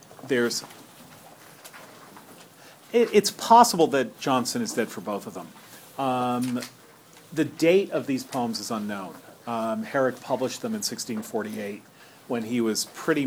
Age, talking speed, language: 40-59, 135 wpm, English